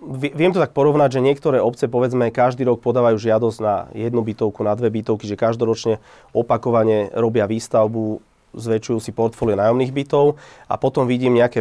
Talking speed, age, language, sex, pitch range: 165 wpm, 30-49, Slovak, male, 110-120 Hz